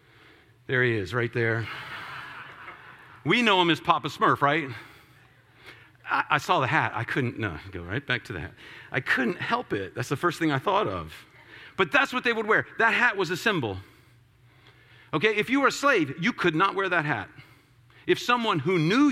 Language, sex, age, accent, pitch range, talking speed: English, male, 50-69, American, 120-155 Hz, 200 wpm